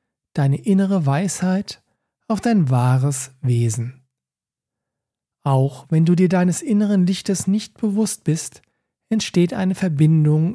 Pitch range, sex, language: 135-190 Hz, male, German